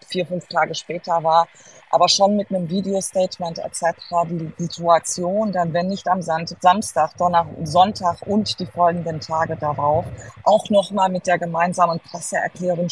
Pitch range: 165-190 Hz